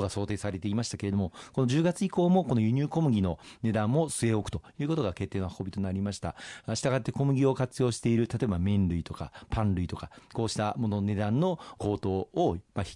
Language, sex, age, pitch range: Japanese, male, 40-59, 95-130 Hz